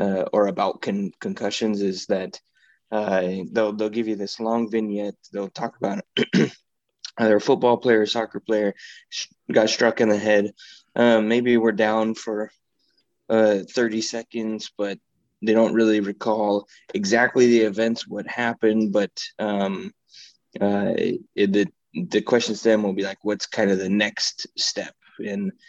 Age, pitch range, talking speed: 20-39, 100-115 Hz, 160 wpm